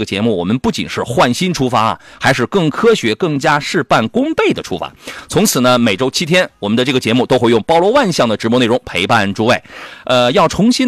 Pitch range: 110-160 Hz